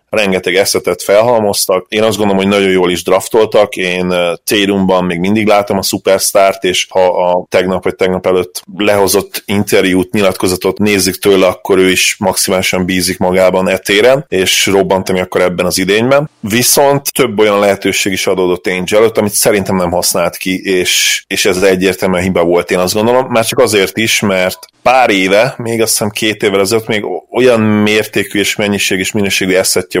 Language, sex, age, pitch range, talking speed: Hungarian, male, 30-49, 90-105 Hz, 175 wpm